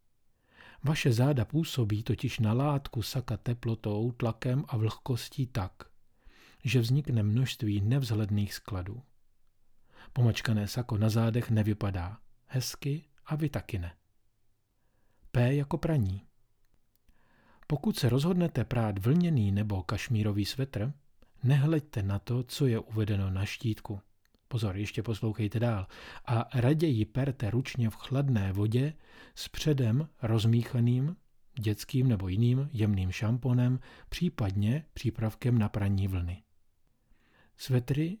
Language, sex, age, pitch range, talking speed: Czech, male, 40-59, 105-130 Hz, 110 wpm